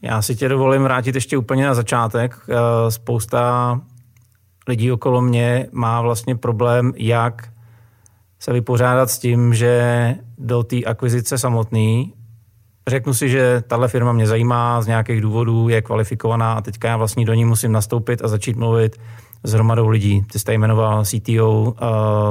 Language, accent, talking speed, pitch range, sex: Czech, native, 150 wpm, 115-125 Hz, male